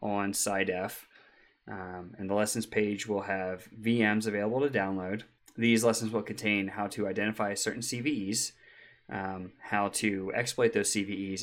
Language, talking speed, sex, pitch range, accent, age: English, 145 wpm, male, 95-110 Hz, American, 20-39